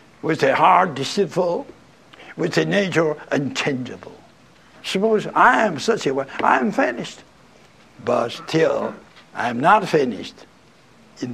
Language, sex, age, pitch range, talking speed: English, male, 60-79, 125-180 Hz, 125 wpm